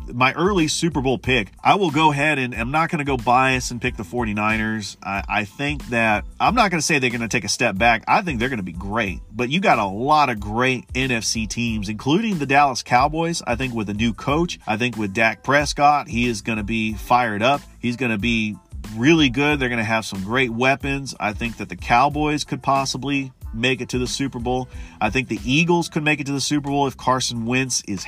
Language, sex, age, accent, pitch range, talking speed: English, male, 40-59, American, 105-135 Hz, 245 wpm